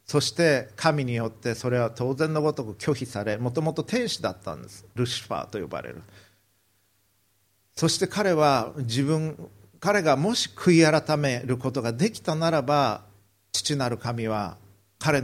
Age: 50-69